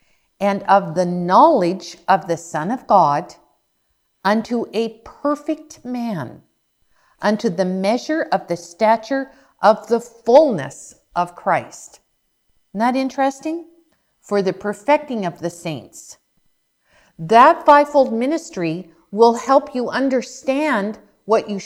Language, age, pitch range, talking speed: English, 50-69, 190-270 Hz, 115 wpm